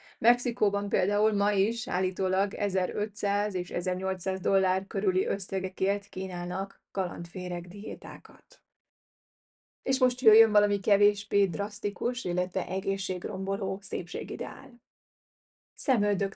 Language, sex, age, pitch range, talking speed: Hungarian, female, 30-49, 190-215 Hz, 90 wpm